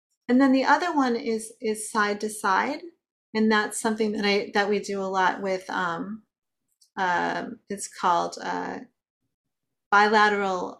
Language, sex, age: English, female, 40-59